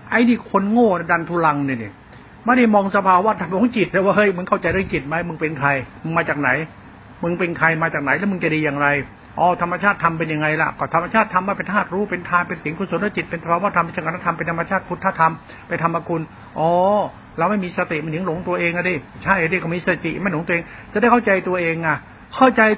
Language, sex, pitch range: Thai, male, 165-200 Hz